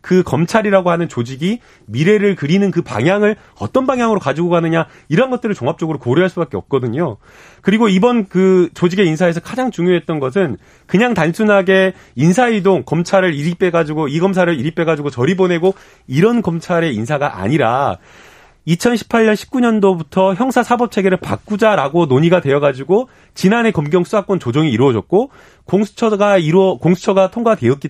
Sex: male